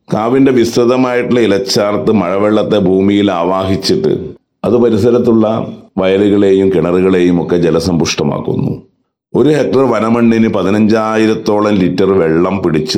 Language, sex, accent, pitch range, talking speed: Malayalam, male, native, 90-105 Hz, 90 wpm